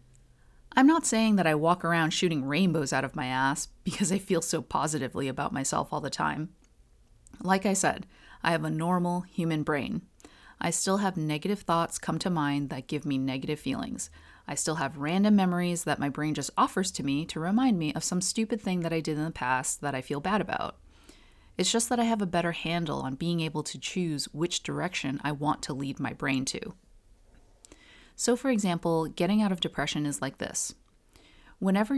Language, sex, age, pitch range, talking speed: English, female, 30-49, 145-185 Hz, 205 wpm